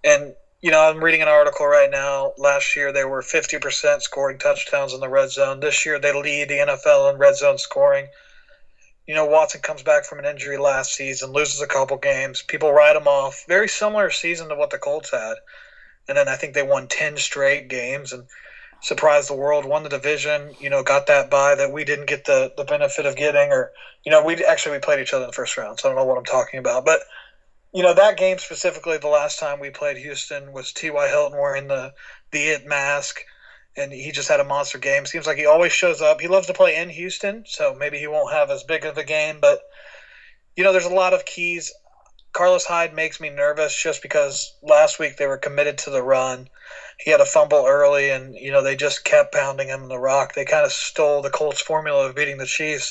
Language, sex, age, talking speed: English, male, 30-49, 235 wpm